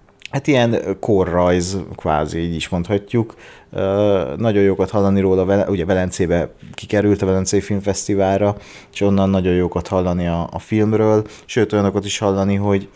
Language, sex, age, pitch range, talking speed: Hungarian, male, 30-49, 95-110 Hz, 140 wpm